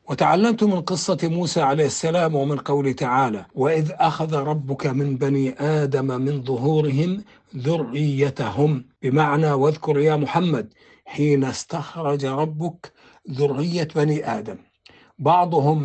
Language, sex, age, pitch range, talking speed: Arabic, male, 60-79, 135-160 Hz, 110 wpm